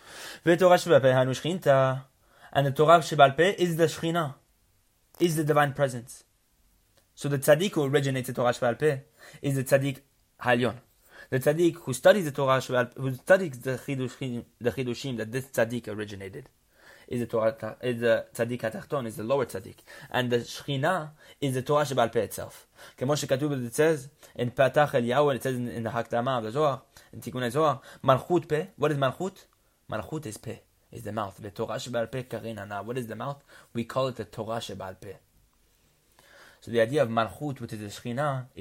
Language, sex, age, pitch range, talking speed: English, male, 20-39, 115-145 Hz, 175 wpm